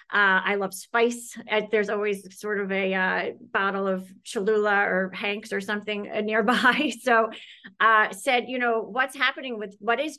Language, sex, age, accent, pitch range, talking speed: English, female, 30-49, American, 195-225 Hz, 165 wpm